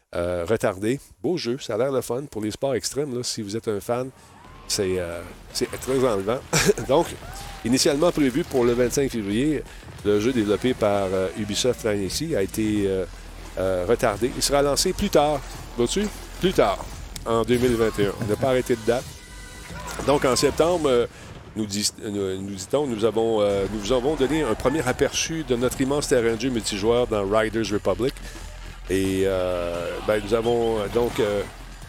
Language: French